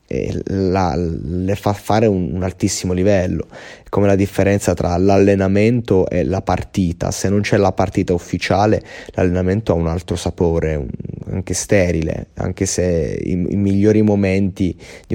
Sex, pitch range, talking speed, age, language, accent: male, 90-110 Hz, 155 wpm, 20-39, Italian, native